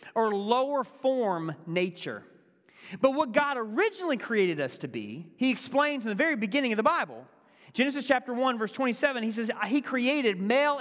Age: 40-59